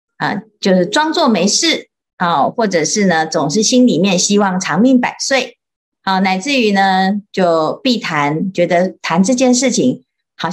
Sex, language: female, Chinese